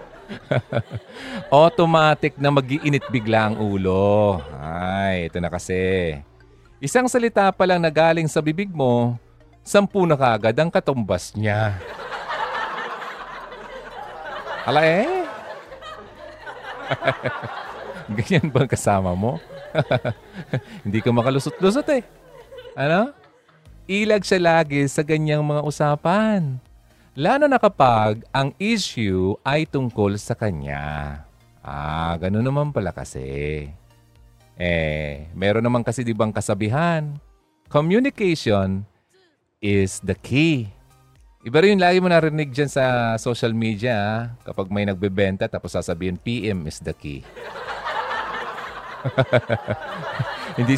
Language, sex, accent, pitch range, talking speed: Filipino, male, native, 100-155 Hz, 105 wpm